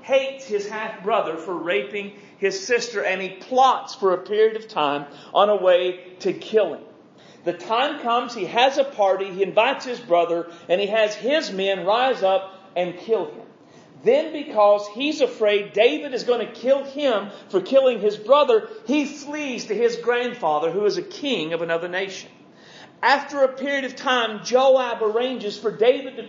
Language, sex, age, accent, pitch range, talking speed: English, male, 40-59, American, 195-250 Hz, 180 wpm